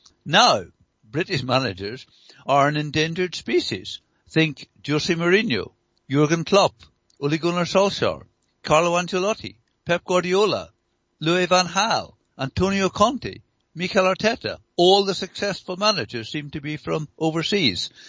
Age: 60-79